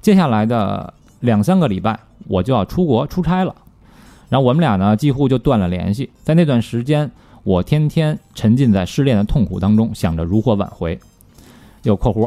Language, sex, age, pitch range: Chinese, male, 20-39, 100-130 Hz